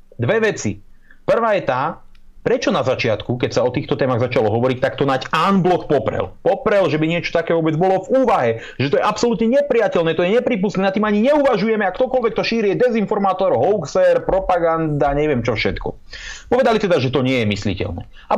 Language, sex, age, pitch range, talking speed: Slovak, male, 30-49, 115-180 Hz, 195 wpm